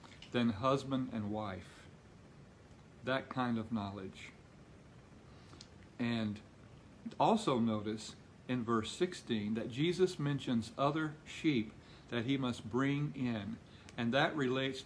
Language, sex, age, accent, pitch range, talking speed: English, male, 50-69, American, 110-130 Hz, 110 wpm